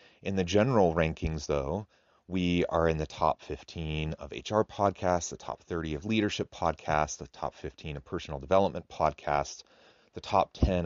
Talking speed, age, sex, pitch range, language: 165 wpm, 30-49, male, 75-95 Hz, English